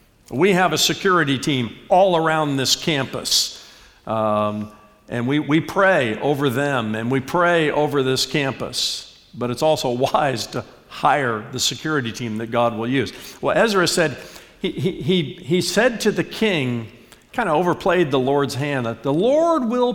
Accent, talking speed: American, 165 wpm